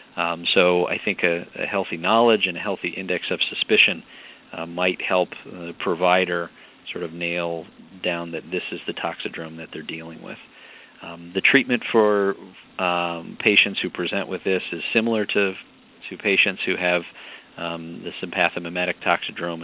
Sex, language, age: male, English, 40-59